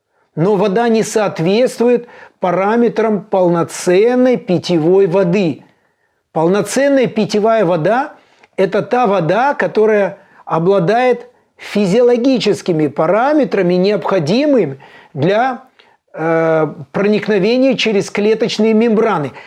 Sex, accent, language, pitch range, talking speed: male, native, Russian, 185-225 Hz, 75 wpm